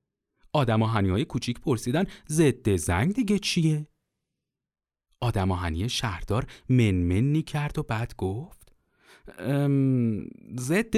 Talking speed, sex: 100 wpm, male